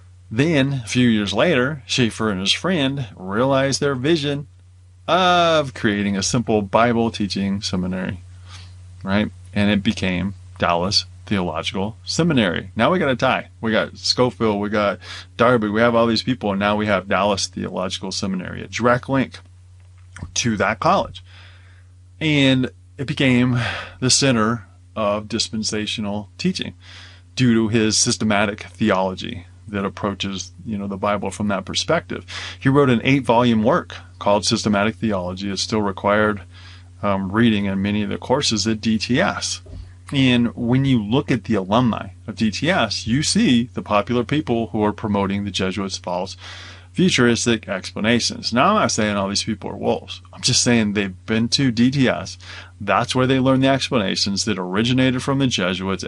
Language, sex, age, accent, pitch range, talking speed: English, male, 30-49, American, 95-120 Hz, 155 wpm